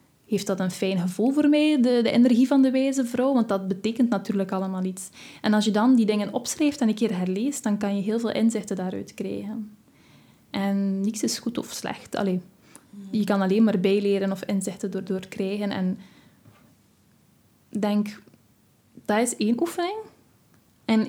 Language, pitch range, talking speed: Dutch, 200-235 Hz, 180 wpm